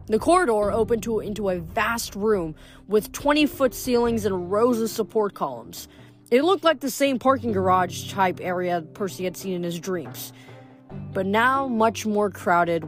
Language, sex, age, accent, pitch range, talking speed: English, female, 30-49, American, 170-235 Hz, 165 wpm